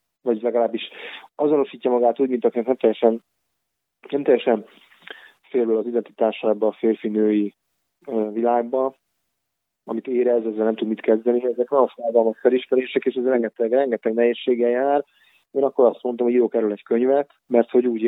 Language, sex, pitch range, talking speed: Hungarian, male, 110-125 Hz, 145 wpm